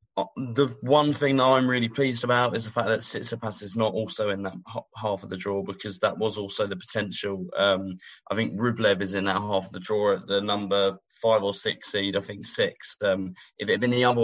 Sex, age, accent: male, 20-39, British